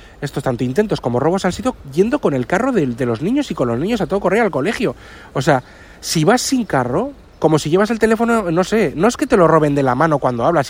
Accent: Spanish